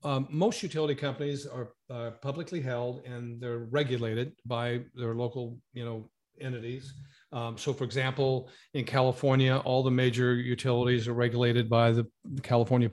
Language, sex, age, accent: English, male, 50-69, American